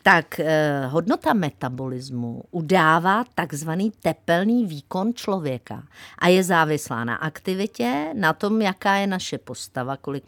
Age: 50-69